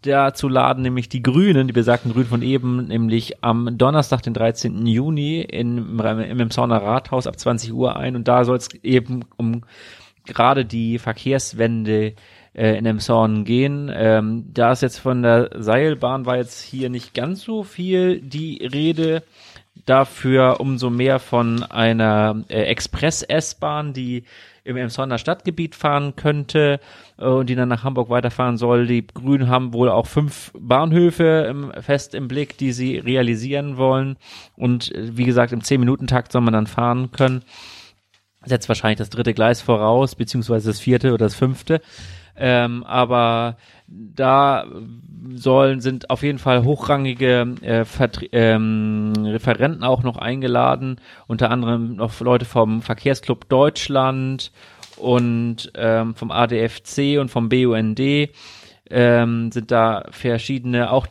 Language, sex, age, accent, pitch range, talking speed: German, male, 30-49, German, 115-135 Hz, 140 wpm